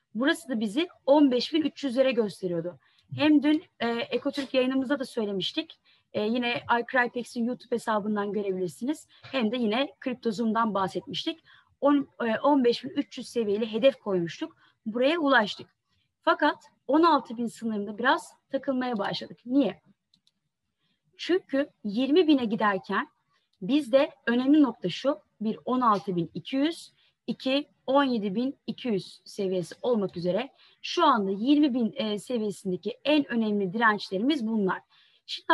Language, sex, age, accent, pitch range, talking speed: Turkish, female, 30-49, native, 210-285 Hz, 105 wpm